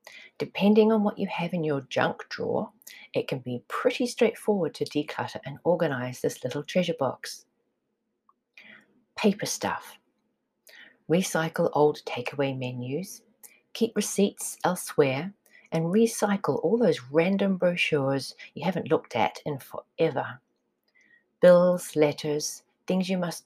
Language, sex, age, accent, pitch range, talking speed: English, female, 40-59, Australian, 135-200 Hz, 125 wpm